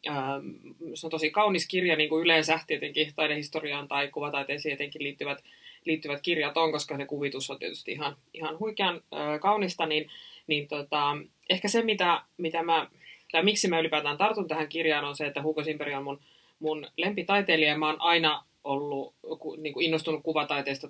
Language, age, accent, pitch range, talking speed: Finnish, 20-39, native, 140-160 Hz, 170 wpm